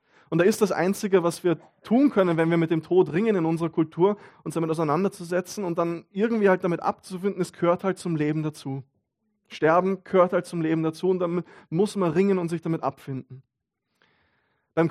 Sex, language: male, German